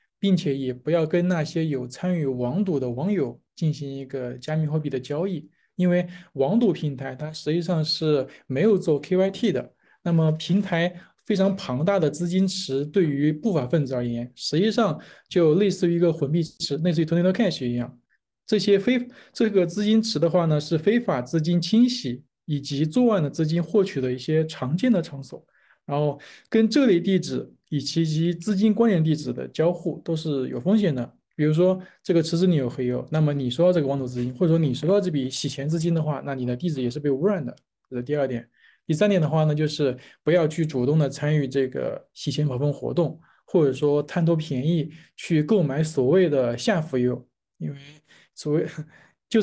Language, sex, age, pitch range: Chinese, male, 20-39, 140-185 Hz